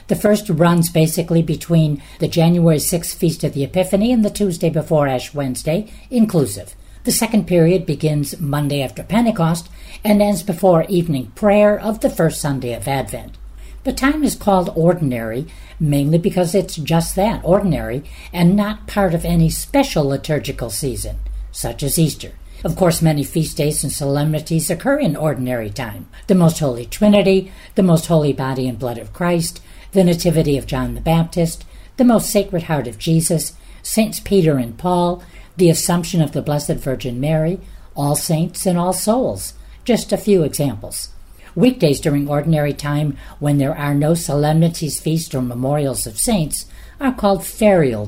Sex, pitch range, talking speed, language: female, 140-185 Hz, 165 wpm, English